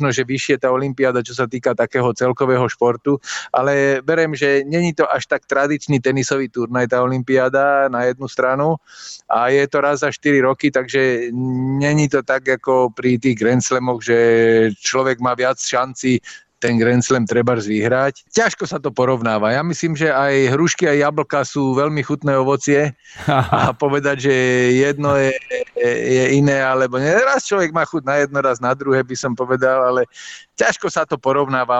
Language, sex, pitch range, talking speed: Slovak, male, 125-145 Hz, 170 wpm